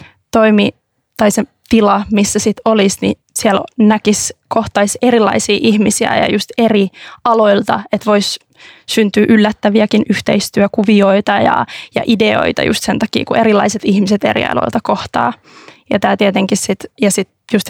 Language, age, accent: Finnish, 20-39, native